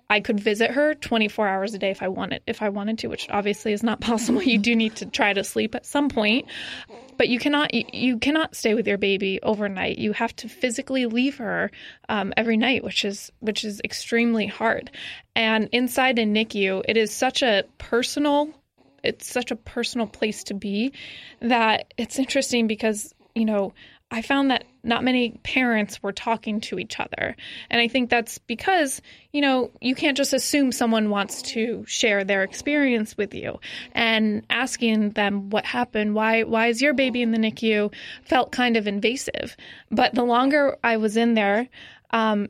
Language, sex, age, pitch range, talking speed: English, female, 20-39, 215-250 Hz, 185 wpm